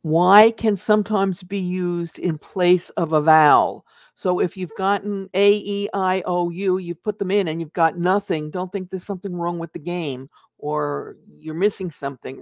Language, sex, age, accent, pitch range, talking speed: English, female, 50-69, American, 165-210 Hz, 170 wpm